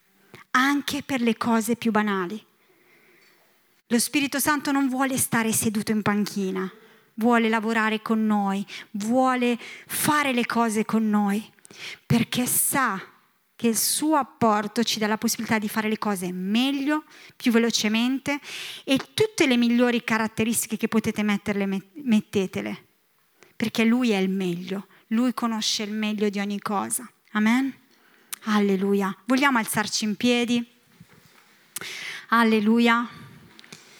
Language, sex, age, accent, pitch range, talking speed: Italian, female, 20-39, native, 215-280 Hz, 125 wpm